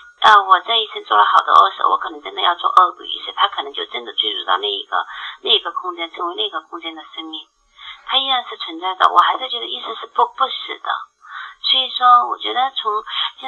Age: 30-49